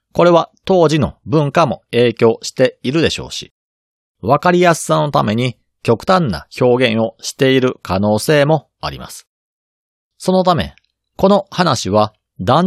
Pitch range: 105-160 Hz